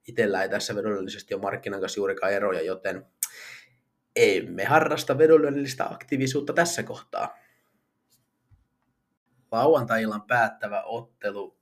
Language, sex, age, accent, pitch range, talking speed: Finnish, male, 30-49, native, 110-145 Hz, 95 wpm